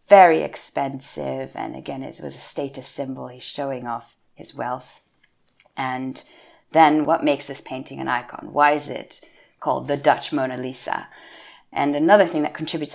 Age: 30-49